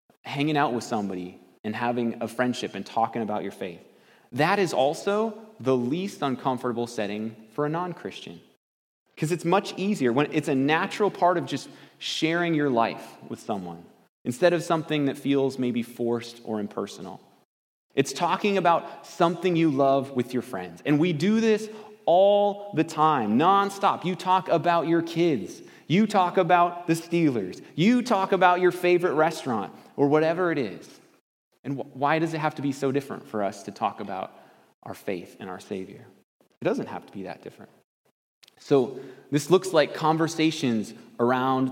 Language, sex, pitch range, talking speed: English, male, 125-175 Hz, 170 wpm